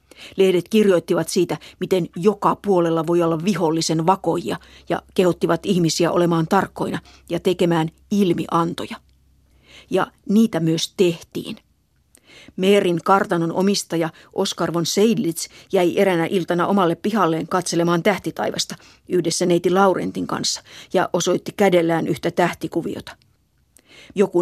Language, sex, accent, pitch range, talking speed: Finnish, female, native, 165-200 Hz, 110 wpm